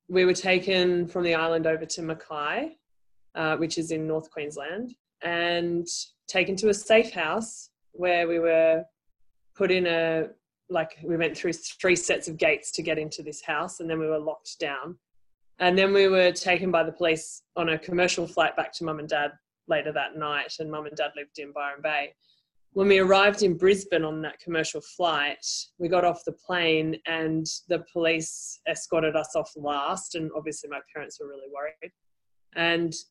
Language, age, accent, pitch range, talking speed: English, 20-39, Australian, 155-180 Hz, 185 wpm